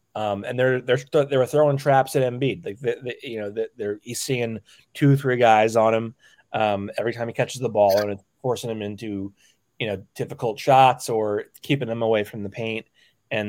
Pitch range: 105-125 Hz